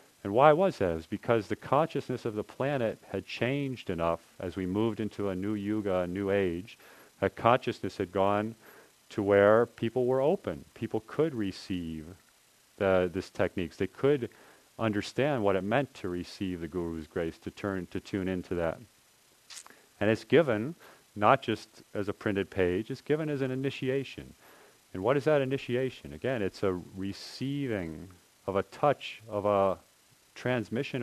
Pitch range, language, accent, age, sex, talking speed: 100-125 Hz, English, American, 40-59, male, 165 wpm